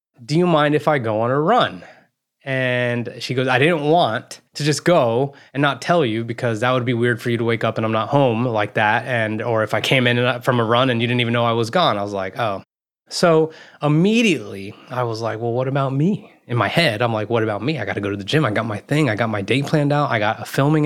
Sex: male